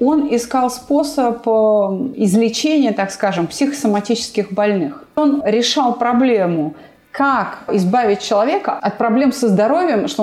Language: Russian